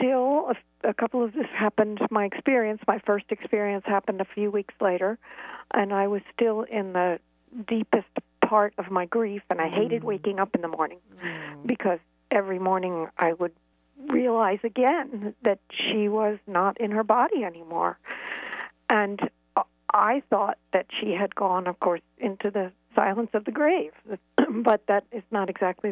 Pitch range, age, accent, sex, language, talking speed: 195-230 Hz, 60-79, American, female, English, 165 wpm